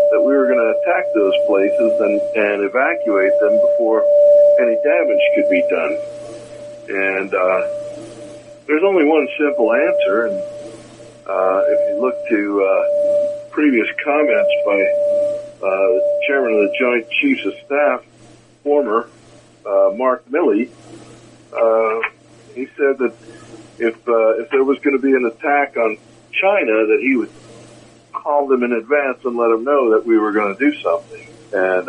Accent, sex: American, male